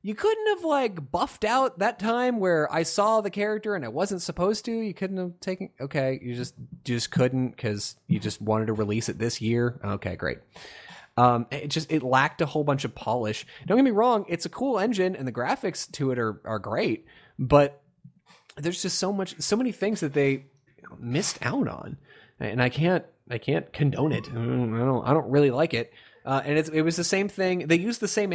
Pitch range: 130-175 Hz